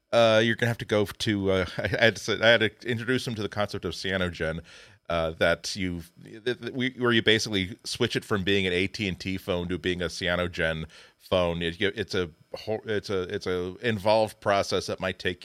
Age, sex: 40-59, male